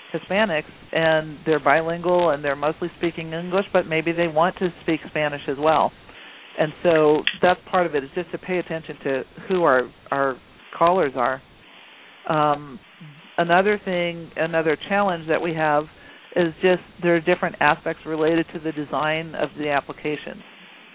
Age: 50-69